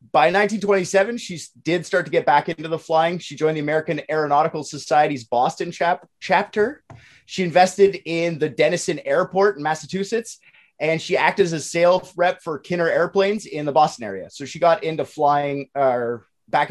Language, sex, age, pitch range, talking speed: English, male, 30-49, 130-175 Hz, 170 wpm